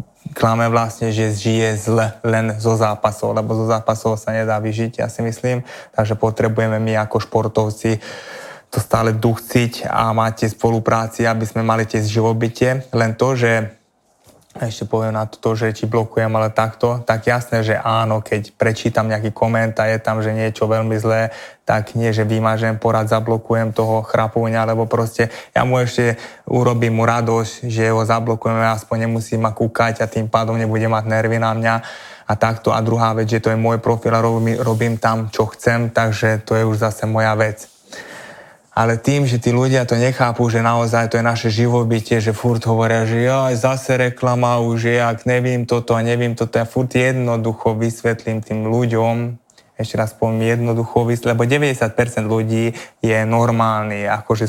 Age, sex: 20-39, male